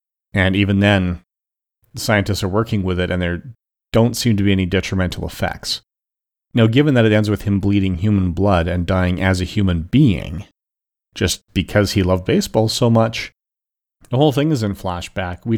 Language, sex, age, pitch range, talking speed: English, male, 40-59, 95-110 Hz, 180 wpm